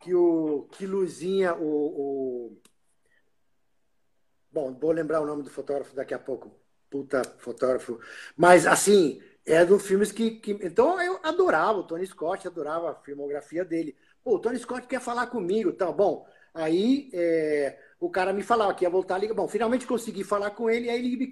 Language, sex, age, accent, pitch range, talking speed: Portuguese, male, 50-69, Brazilian, 180-245 Hz, 175 wpm